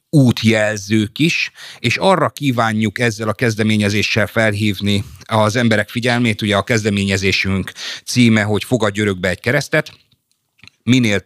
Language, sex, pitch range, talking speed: Hungarian, male, 100-125 Hz, 115 wpm